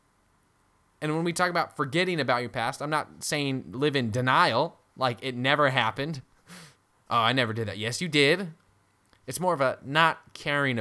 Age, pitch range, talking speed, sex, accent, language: 20-39, 105-130 Hz, 185 wpm, male, American, English